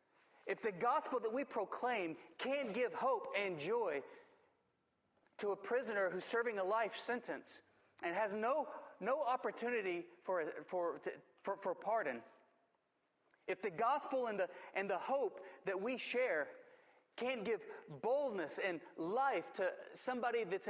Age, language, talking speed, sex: 40-59, English, 140 wpm, male